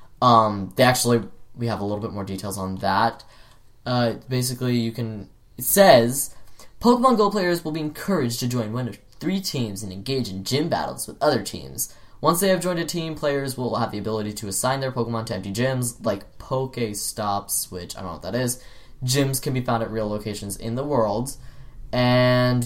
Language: English